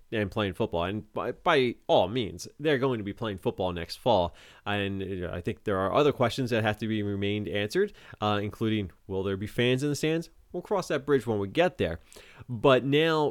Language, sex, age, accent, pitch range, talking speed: English, male, 30-49, American, 100-125 Hz, 215 wpm